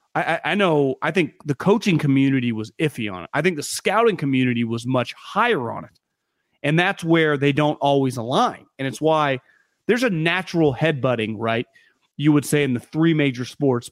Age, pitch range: 30-49, 130-170 Hz